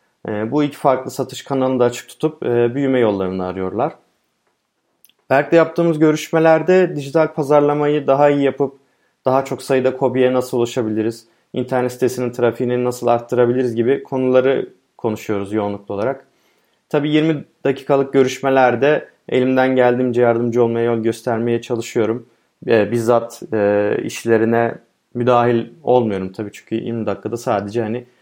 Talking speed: 120 wpm